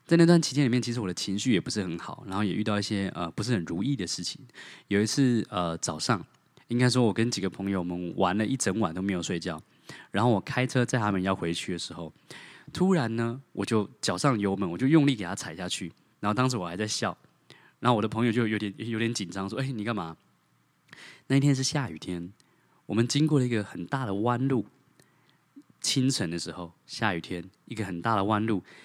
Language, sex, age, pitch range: English, male, 20-39, 95-130 Hz